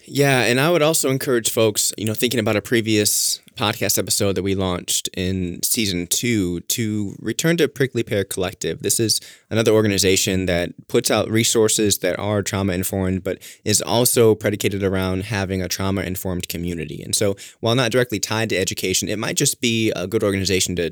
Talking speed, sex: 180 wpm, male